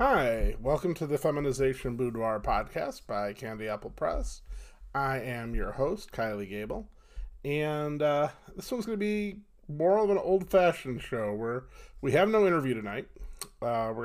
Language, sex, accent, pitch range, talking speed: English, male, American, 115-160 Hz, 160 wpm